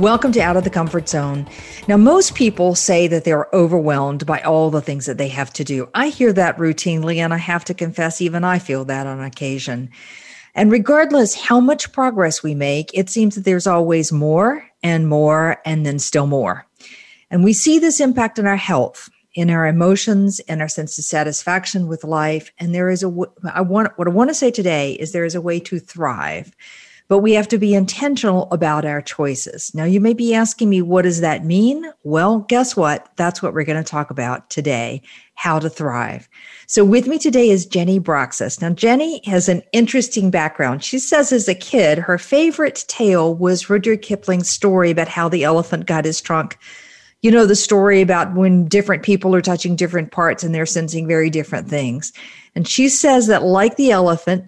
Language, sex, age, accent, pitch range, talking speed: English, female, 50-69, American, 155-205 Hz, 205 wpm